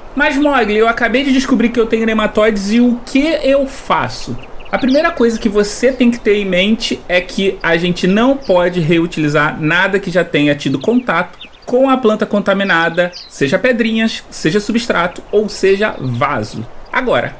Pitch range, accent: 185-255 Hz, Brazilian